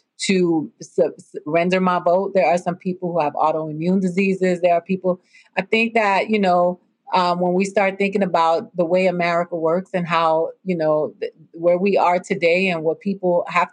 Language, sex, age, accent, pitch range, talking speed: English, female, 40-59, American, 170-200 Hz, 190 wpm